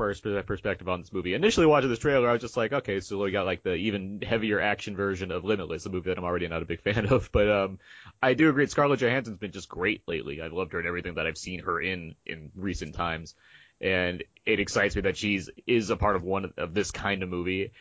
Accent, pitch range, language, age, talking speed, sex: American, 95-120 Hz, English, 30-49, 255 wpm, male